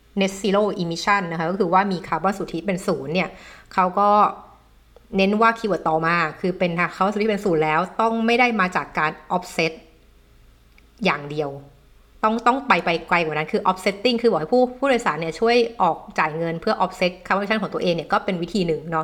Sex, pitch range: female, 165-205 Hz